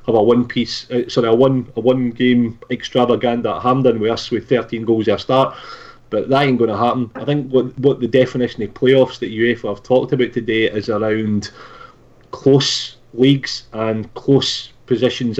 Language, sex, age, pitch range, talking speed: English, male, 30-49, 110-125 Hz, 190 wpm